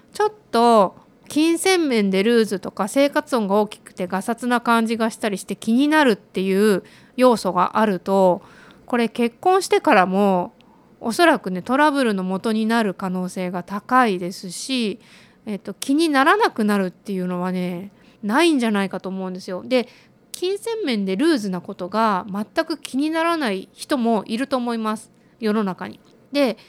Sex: female